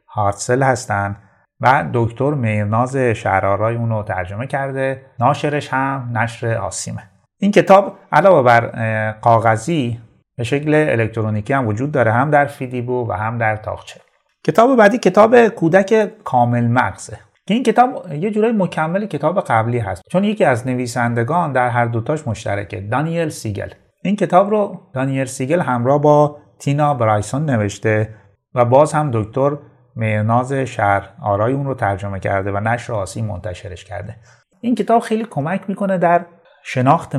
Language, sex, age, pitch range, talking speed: Persian, male, 30-49, 110-150 Hz, 140 wpm